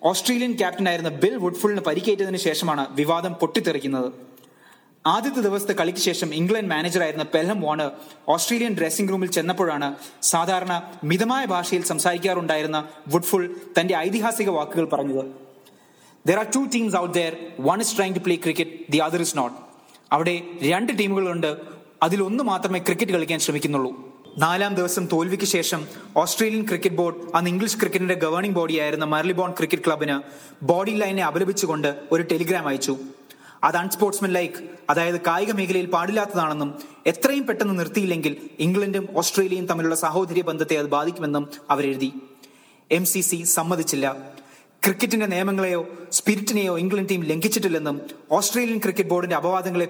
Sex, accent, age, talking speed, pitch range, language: male, Indian, 20-39, 145 wpm, 155-195 Hz, English